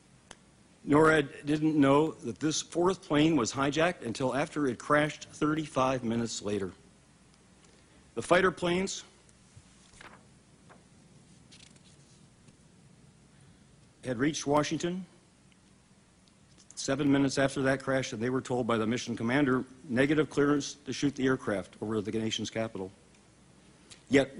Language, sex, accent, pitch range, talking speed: English, male, American, 130-155 Hz, 115 wpm